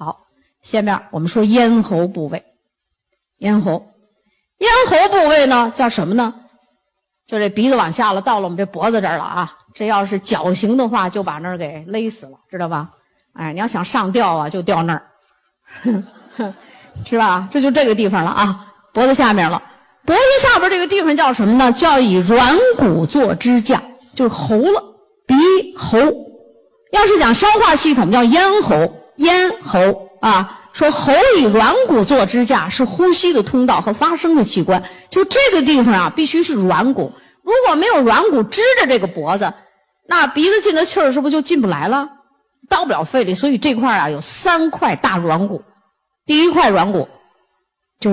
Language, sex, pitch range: Chinese, female, 195-320 Hz